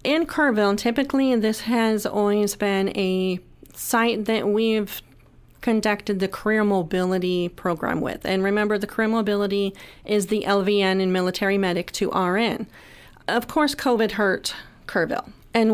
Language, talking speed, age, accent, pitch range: English, 135 wpm, 40-59, American, 200-230 Hz